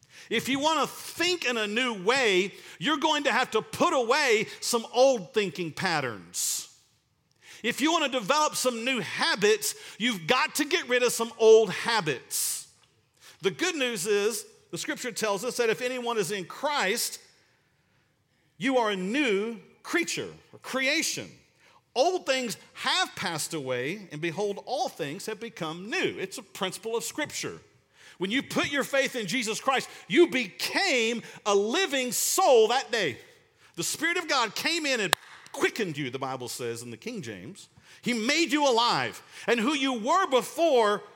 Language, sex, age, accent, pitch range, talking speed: English, male, 50-69, American, 185-275 Hz, 170 wpm